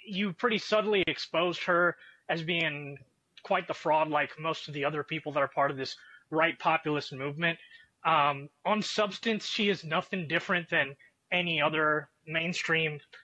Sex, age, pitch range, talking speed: male, 20-39, 155-195 Hz, 160 wpm